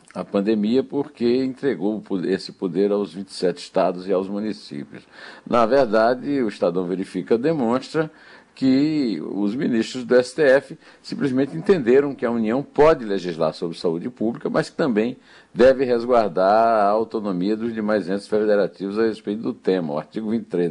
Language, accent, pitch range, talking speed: Portuguese, Brazilian, 95-130 Hz, 150 wpm